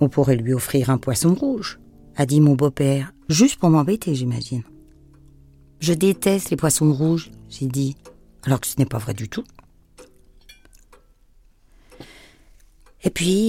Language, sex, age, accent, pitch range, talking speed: English, female, 50-69, French, 135-175 Hz, 140 wpm